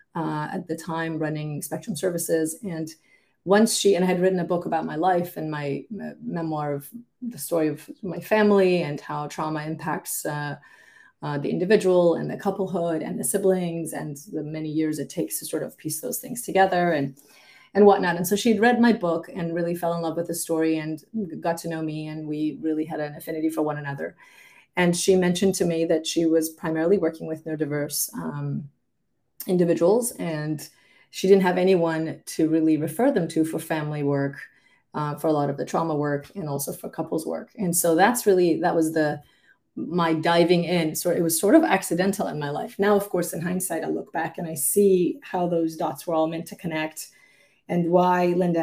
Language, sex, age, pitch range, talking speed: English, female, 30-49, 155-185 Hz, 205 wpm